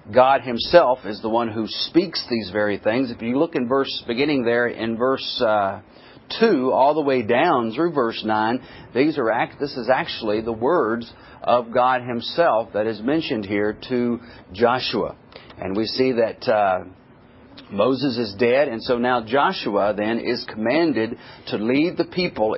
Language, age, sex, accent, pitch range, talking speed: English, 40-59, male, American, 115-145 Hz, 170 wpm